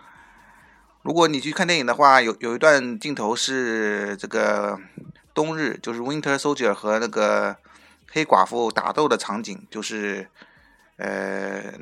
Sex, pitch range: male, 110-140 Hz